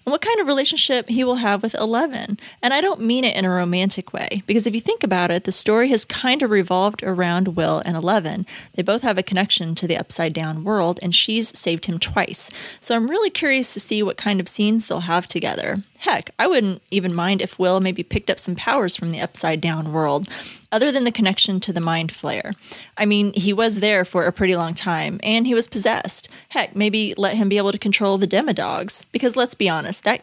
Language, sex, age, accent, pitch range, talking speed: English, female, 20-39, American, 180-220 Hz, 230 wpm